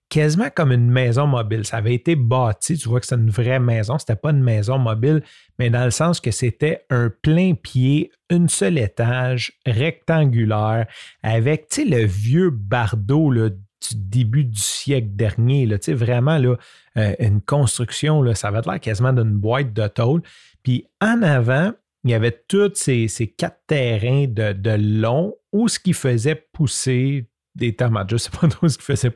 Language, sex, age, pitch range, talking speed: French, male, 40-59, 115-150 Hz, 175 wpm